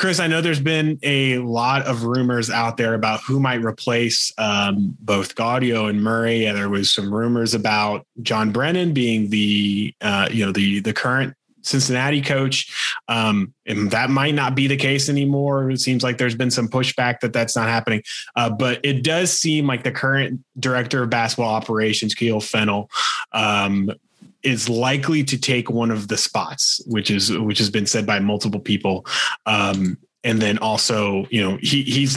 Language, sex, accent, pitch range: English, male, American, 105-130 Hz